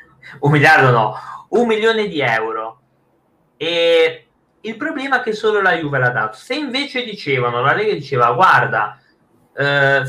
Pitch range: 125-185 Hz